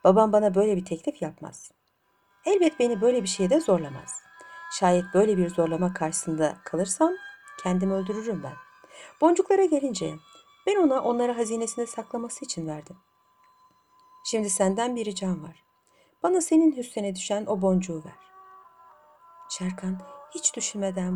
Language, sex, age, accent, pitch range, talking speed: Turkish, female, 60-79, native, 185-295 Hz, 130 wpm